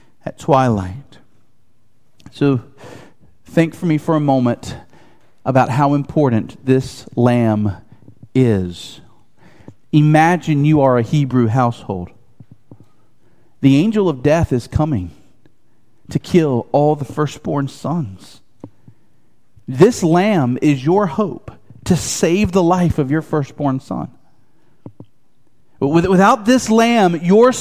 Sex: male